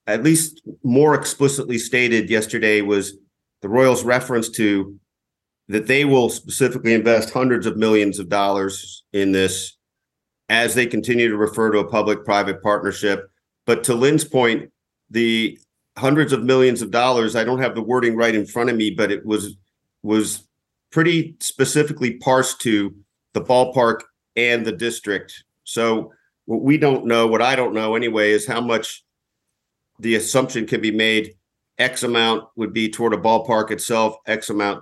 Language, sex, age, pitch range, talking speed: English, male, 50-69, 105-125 Hz, 160 wpm